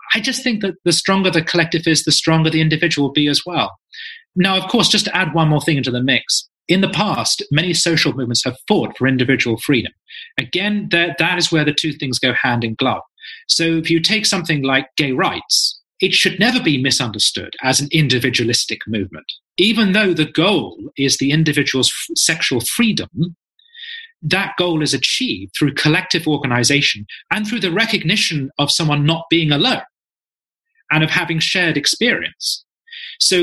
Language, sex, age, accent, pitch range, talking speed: English, male, 30-49, British, 140-190 Hz, 180 wpm